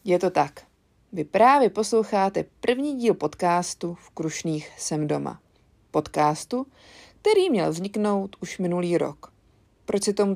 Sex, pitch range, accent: female, 170-230 Hz, native